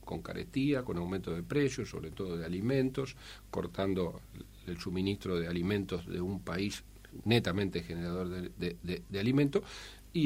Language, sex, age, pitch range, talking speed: Spanish, male, 50-69, 90-120 Hz, 140 wpm